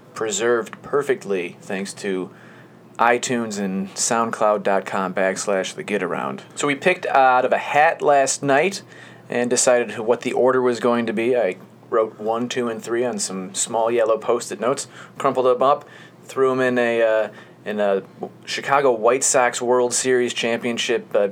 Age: 30-49